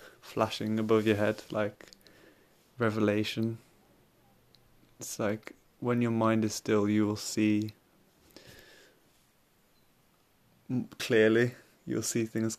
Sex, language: male, English